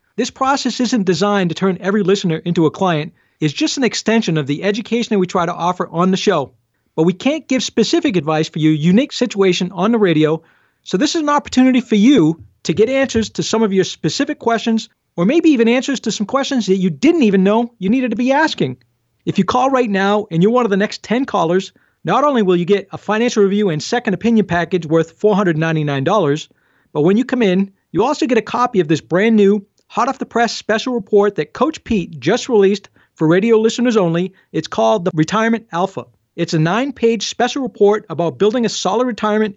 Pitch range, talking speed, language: 175-230 Hz, 210 wpm, English